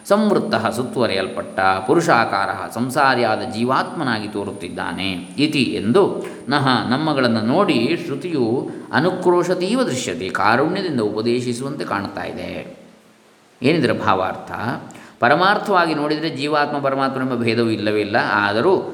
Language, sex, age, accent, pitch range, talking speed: Kannada, male, 20-39, native, 115-150 Hz, 80 wpm